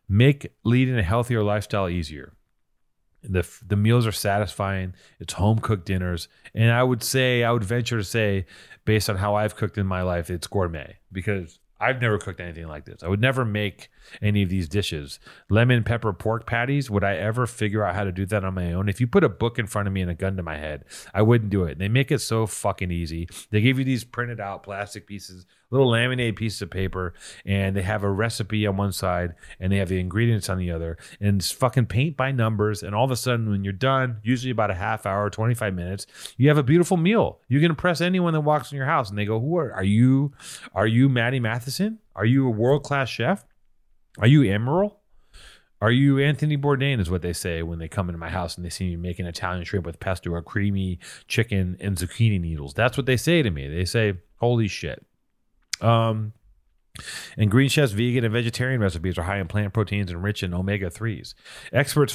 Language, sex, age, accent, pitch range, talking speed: English, male, 30-49, American, 95-120 Hz, 220 wpm